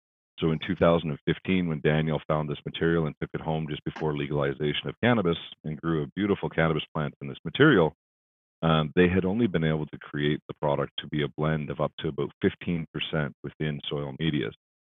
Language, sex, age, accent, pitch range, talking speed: English, male, 40-59, American, 70-80 Hz, 195 wpm